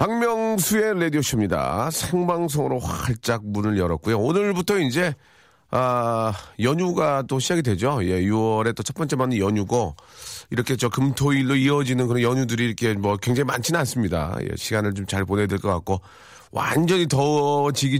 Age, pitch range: 40-59, 100-145 Hz